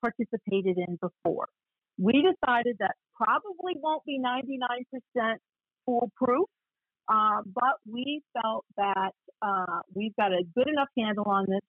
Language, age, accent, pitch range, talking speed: English, 40-59, American, 190-245 Hz, 130 wpm